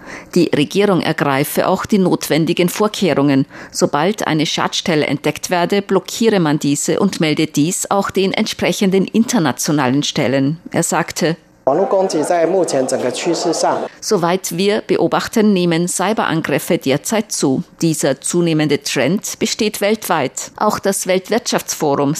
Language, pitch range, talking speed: German, 155-195 Hz, 110 wpm